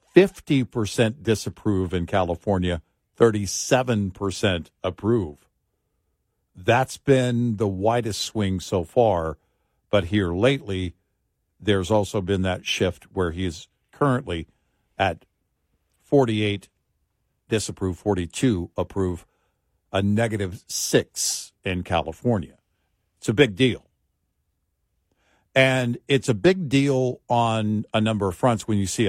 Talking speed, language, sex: 105 wpm, English, male